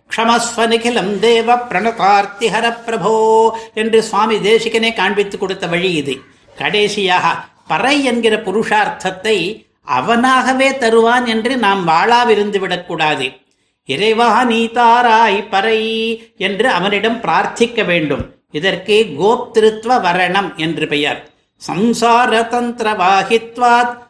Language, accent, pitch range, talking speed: Tamil, native, 190-230 Hz, 75 wpm